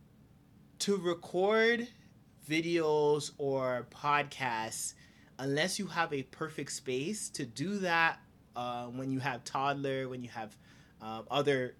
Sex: male